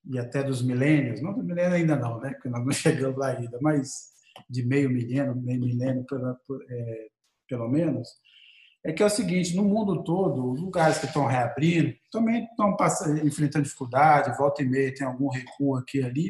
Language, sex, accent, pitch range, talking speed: Portuguese, male, Brazilian, 140-175 Hz, 195 wpm